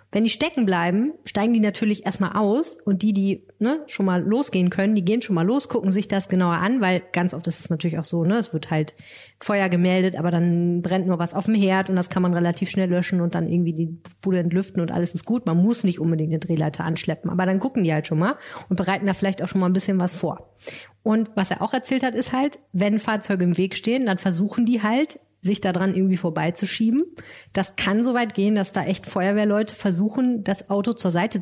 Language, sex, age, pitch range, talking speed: German, female, 30-49, 175-215 Hz, 245 wpm